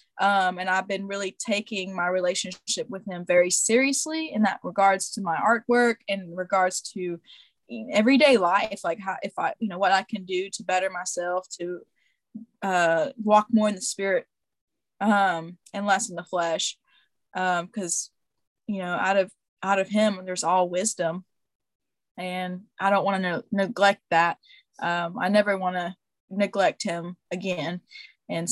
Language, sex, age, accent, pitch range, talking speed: English, female, 10-29, American, 185-220 Hz, 160 wpm